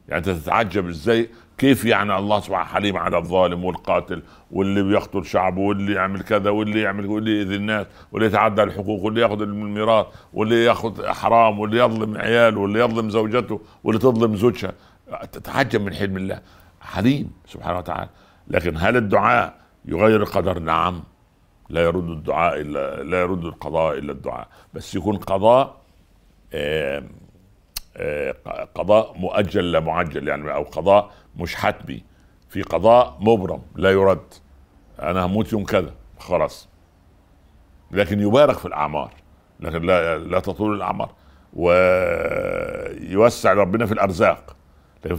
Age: 60-79